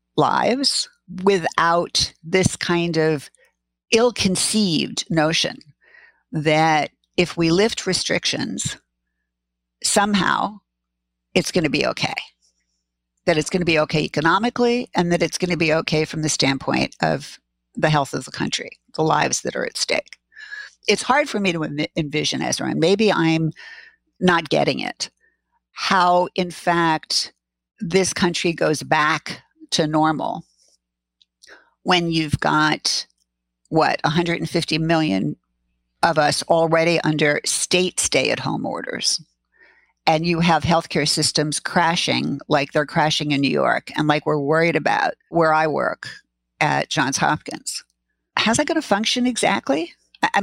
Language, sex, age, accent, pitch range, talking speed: English, female, 50-69, American, 150-195 Hz, 135 wpm